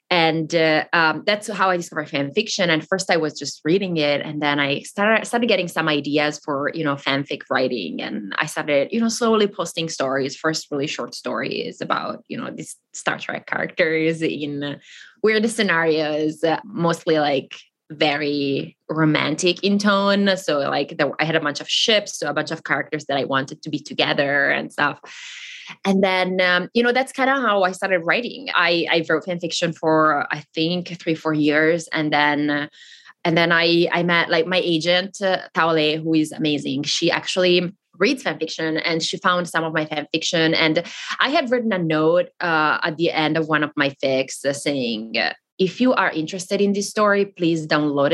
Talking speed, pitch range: 195 wpm, 150-190 Hz